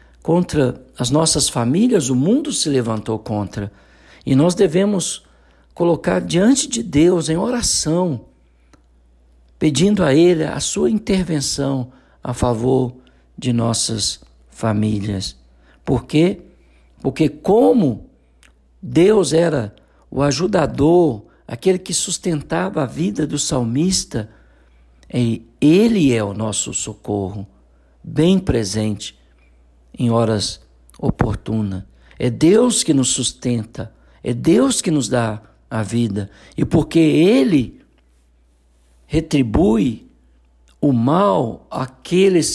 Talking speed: 100 wpm